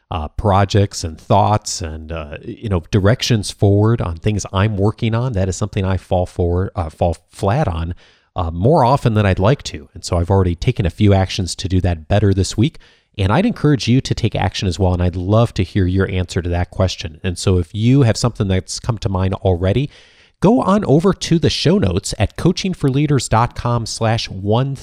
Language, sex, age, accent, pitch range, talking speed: English, male, 30-49, American, 95-115 Hz, 210 wpm